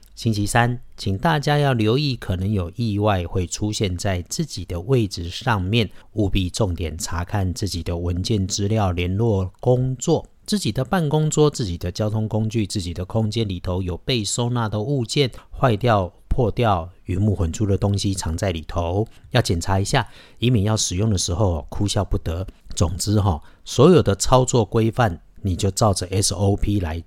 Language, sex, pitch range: Chinese, male, 95-125 Hz